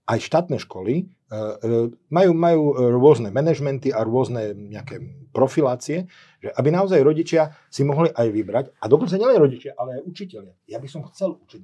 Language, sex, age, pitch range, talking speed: Slovak, male, 40-59, 110-145 Hz, 180 wpm